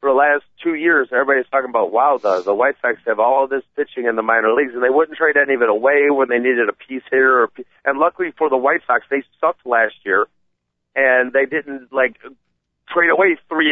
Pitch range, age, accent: 125-155 Hz, 40-59, American